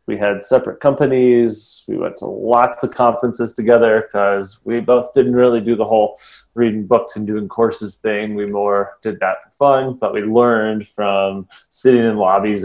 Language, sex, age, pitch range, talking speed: English, male, 20-39, 100-115 Hz, 180 wpm